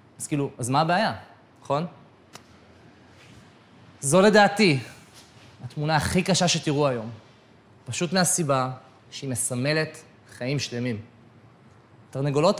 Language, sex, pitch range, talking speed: Hebrew, male, 115-155 Hz, 95 wpm